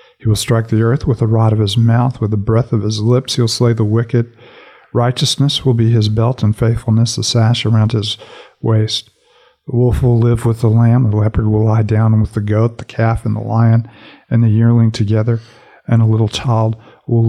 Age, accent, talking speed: 50-69, American, 220 wpm